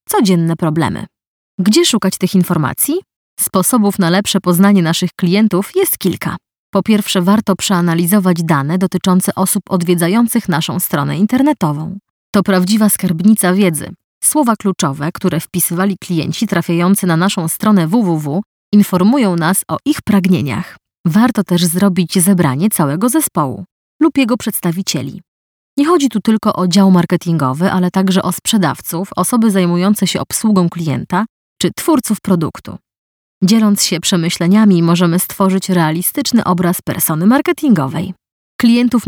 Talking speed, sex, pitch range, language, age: 125 wpm, female, 175-215 Hz, Polish, 20-39